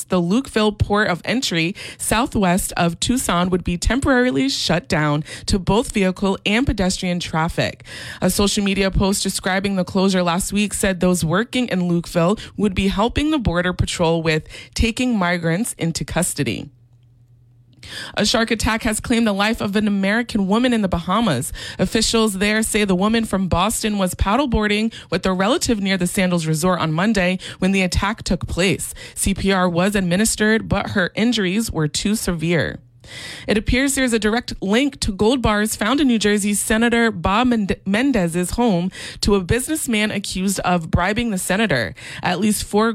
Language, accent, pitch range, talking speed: English, American, 175-220 Hz, 170 wpm